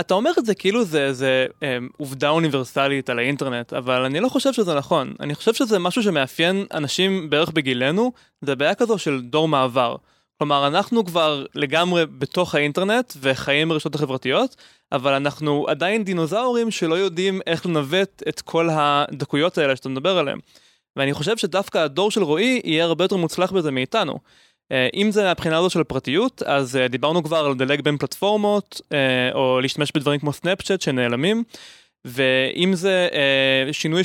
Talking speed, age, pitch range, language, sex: 160 wpm, 20-39, 140-190 Hz, Hebrew, male